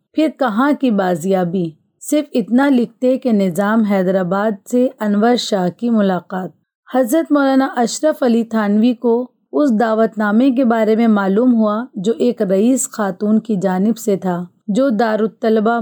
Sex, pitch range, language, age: female, 200-255 Hz, Urdu, 30-49